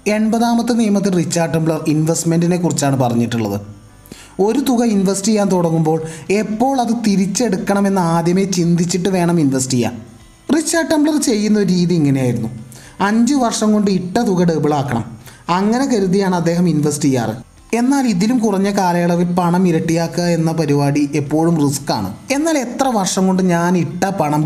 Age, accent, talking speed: 20-39, native, 130 wpm